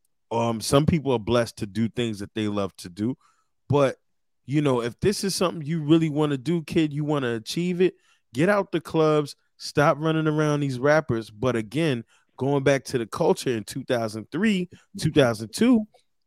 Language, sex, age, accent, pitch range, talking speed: English, male, 20-39, American, 110-150 Hz, 185 wpm